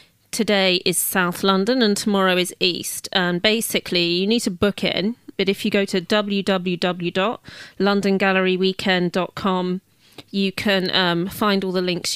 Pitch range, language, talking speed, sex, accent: 180-200 Hz, English, 140 wpm, female, British